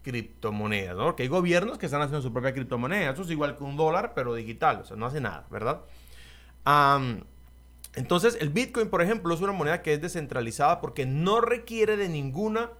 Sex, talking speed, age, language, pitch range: male, 190 wpm, 30-49, Spanish, 130-180 Hz